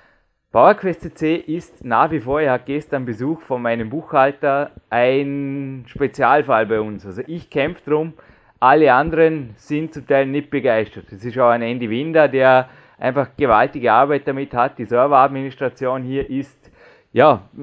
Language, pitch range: German, 125-145 Hz